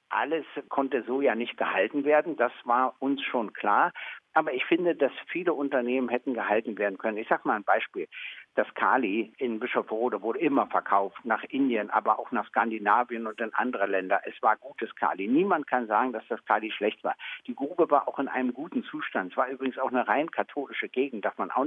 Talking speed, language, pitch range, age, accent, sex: 210 wpm, German, 125-150 Hz, 60-79, German, male